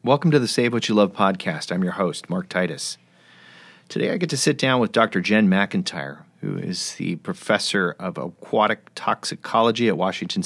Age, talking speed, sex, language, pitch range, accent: 30-49, 185 wpm, male, English, 85-115 Hz, American